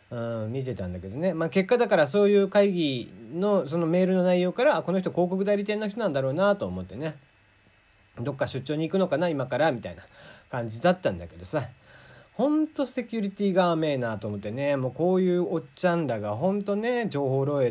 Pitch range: 125-195 Hz